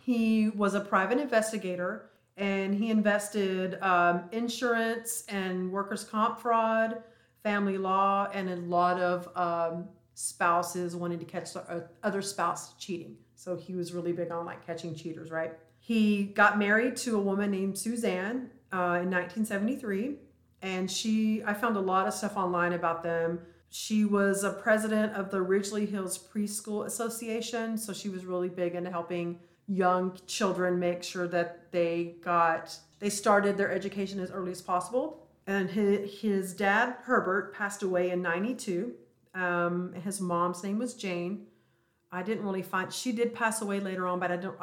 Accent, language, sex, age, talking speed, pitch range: American, English, female, 40-59, 160 wpm, 175-210 Hz